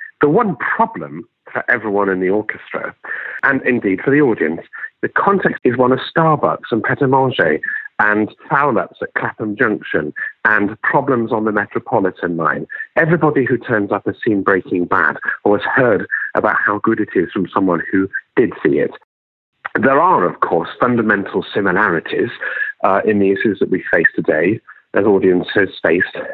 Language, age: English, 40-59